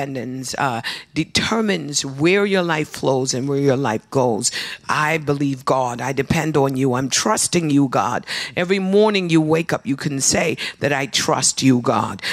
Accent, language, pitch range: American, English, 140-170 Hz